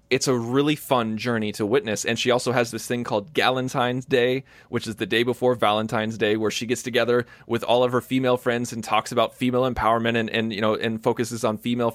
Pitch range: 115-135 Hz